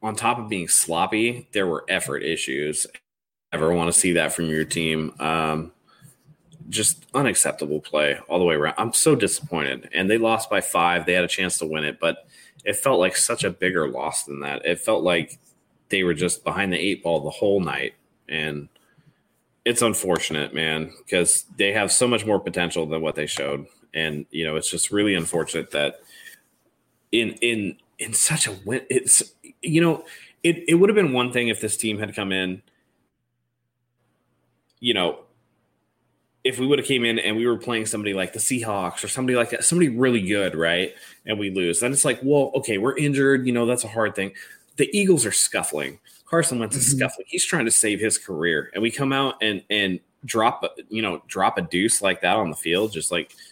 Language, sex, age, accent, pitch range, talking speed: English, male, 20-39, American, 85-125 Hz, 205 wpm